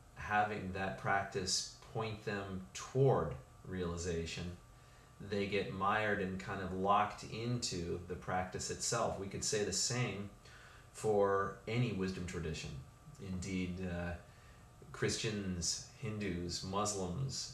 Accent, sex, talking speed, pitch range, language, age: American, male, 110 wpm, 95-120 Hz, English, 30-49